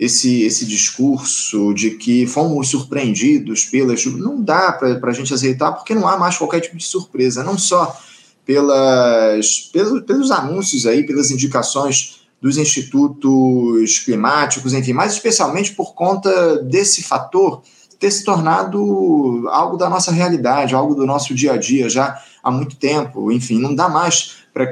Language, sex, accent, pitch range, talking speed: Portuguese, male, Brazilian, 120-170 Hz, 155 wpm